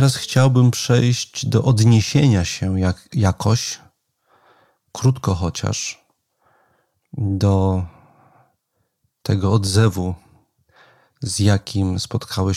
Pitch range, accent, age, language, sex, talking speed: 100-120 Hz, native, 40-59, Polish, male, 70 wpm